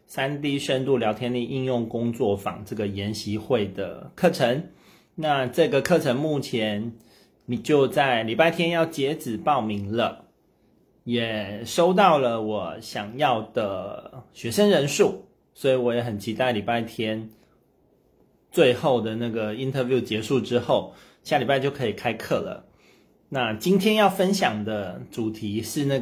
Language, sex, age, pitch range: Chinese, male, 30-49, 110-150 Hz